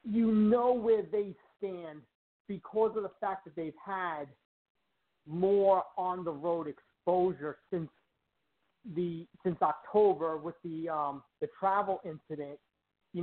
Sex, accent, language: male, American, English